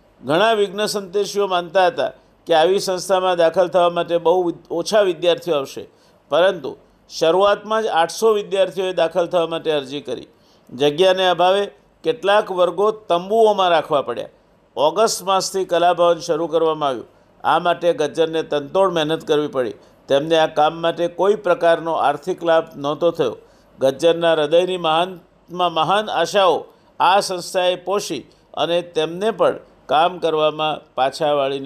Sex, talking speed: male, 125 wpm